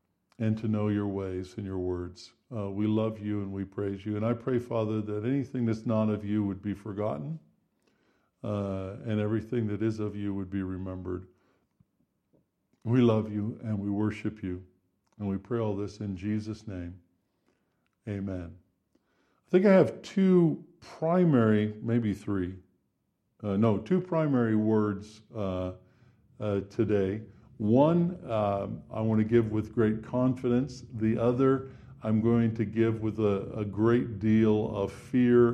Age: 50-69